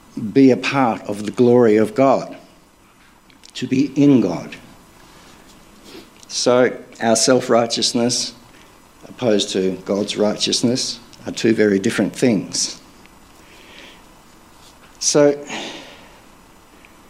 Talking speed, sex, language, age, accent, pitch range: 90 wpm, male, English, 60-79, Australian, 100-130 Hz